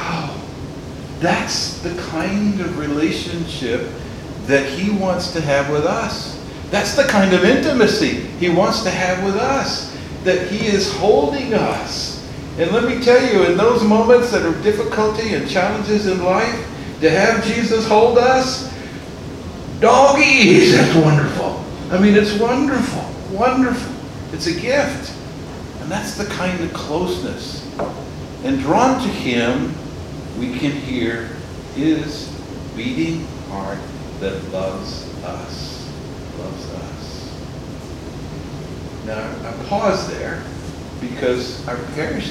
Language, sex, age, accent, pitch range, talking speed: English, male, 50-69, American, 145-220 Hz, 125 wpm